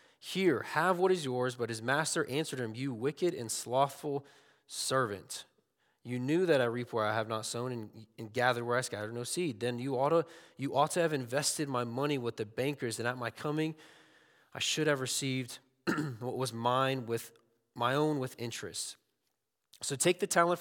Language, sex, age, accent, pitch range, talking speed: English, male, 20-39, American, 120-160 Hz, 190 wpm